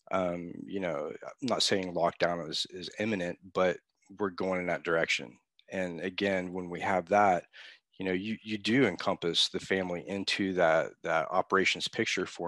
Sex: male